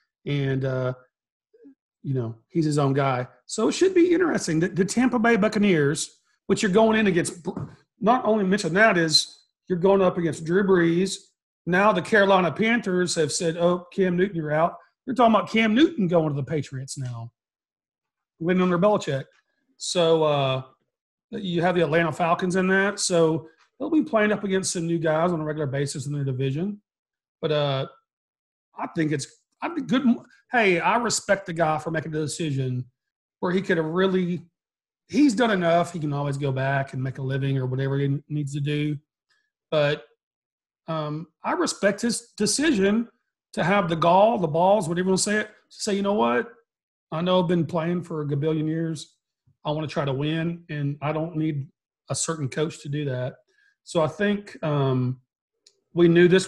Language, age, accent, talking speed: English, 40-59, American, 195 wpm